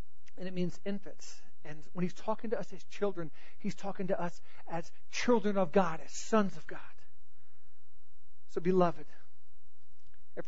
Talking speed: 155 wpm